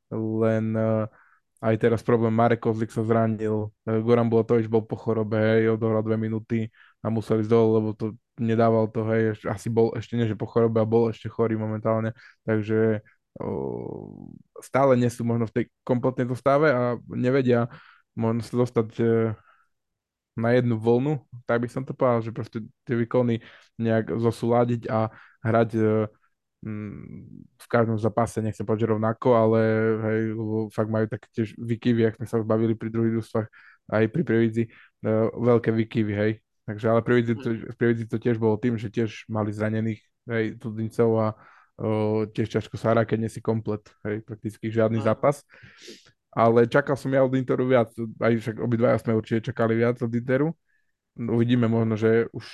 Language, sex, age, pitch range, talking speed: Slovak, male, 20-39, 110-120 Hz, 170 wpm